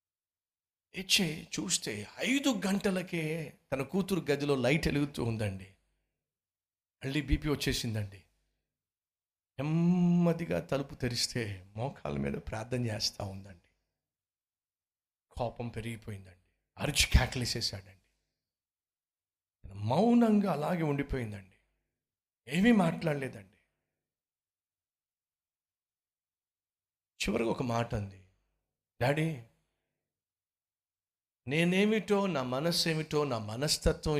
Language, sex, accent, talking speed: Telugu, male, native, 70 wpm